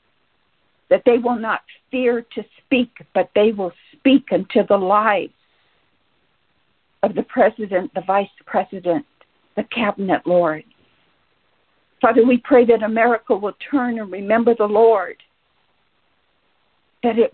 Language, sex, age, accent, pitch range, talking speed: English, female, 60-79, American, 185-230 Hz, 125 wpm